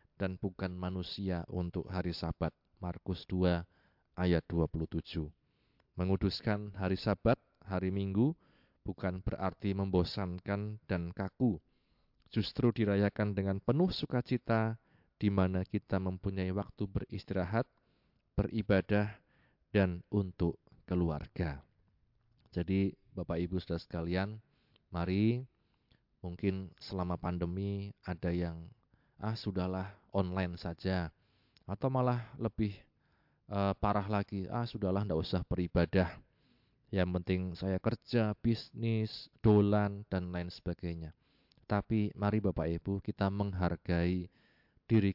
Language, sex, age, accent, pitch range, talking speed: Indonesian, male, 30-49, native, 90-105 Hz, 100 wpm